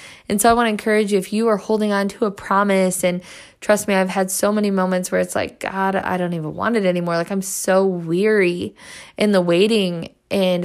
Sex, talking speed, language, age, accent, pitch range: female, 230 wpm, English, 20-39, American, 175-205 Hz